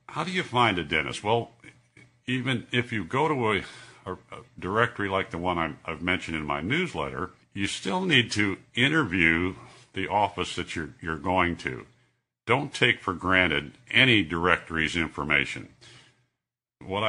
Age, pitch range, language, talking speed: 60-79, 80-110 Hz, English, 150 wpm